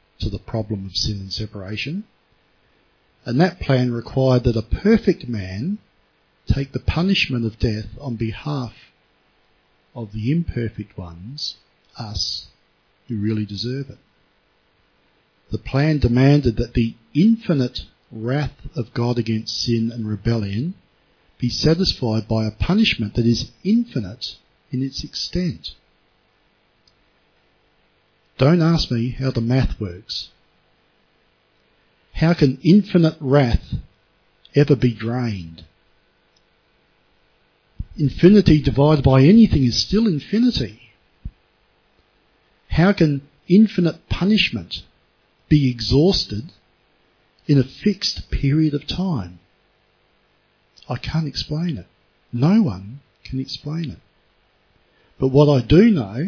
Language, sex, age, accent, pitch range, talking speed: English, male, 50-69, Australian, 105-150 Hz, 110 wpm